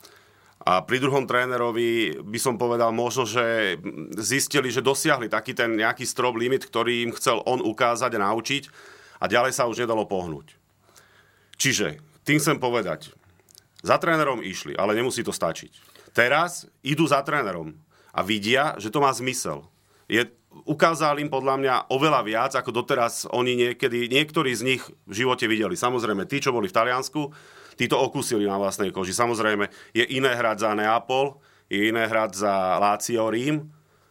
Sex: male